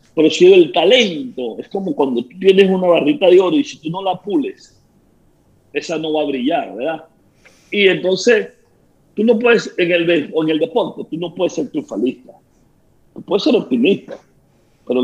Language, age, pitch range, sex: Spanish, 50-69, 160-250 Hz, male